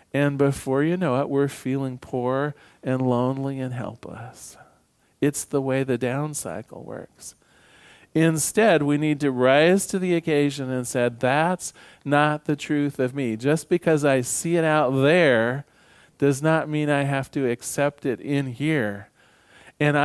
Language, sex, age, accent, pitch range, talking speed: English, male, 40-59, American, 125-155 Hz, 160 wpm